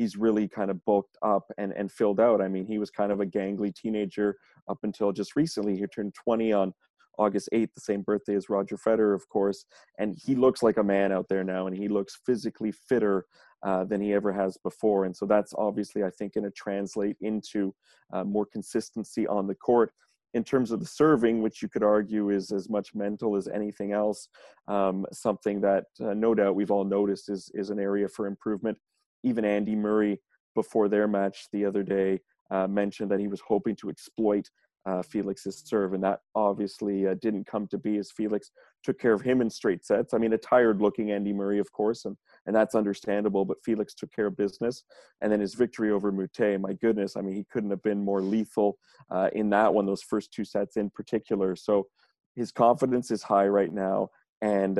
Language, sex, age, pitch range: English, male, 30-49, 100-110 Hz